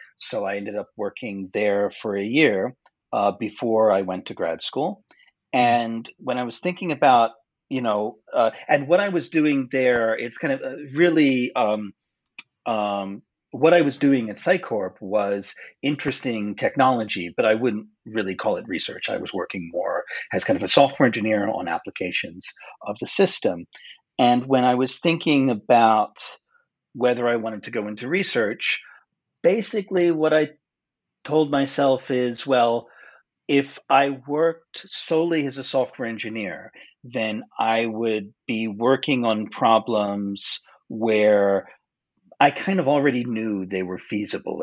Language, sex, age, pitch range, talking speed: English, male, 40-59, 105-140 Hz, 150 wpm